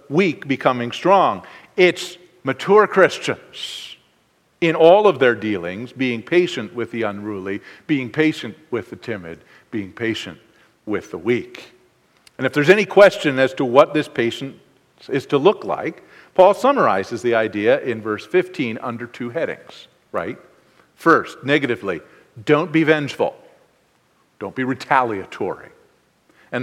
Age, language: 50-69, English